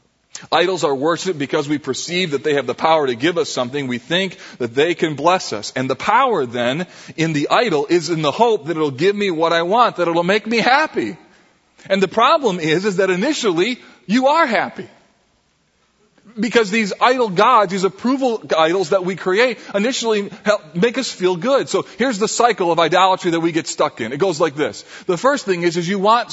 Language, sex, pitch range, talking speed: English, male, 170-225 Hz, 215 wpm